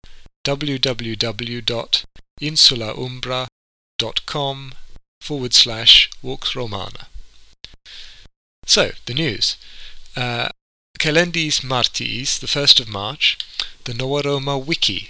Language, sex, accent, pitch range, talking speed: English, male, British, 115-135 Hz, 70 wpm